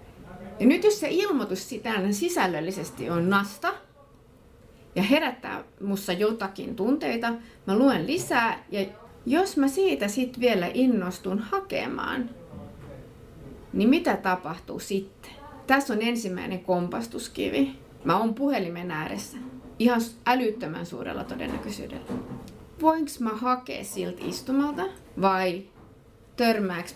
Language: Finnish